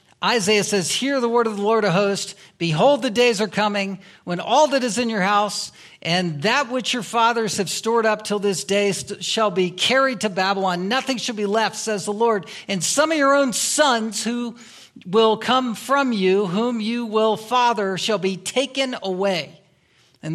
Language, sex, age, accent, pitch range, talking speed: English, male, 50-69, American, 190-240 Hz, 190 wpm